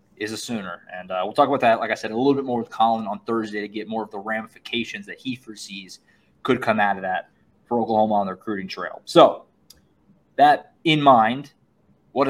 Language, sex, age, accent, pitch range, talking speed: English, male, 20-39, American, 115-145 Hz, 220 wpm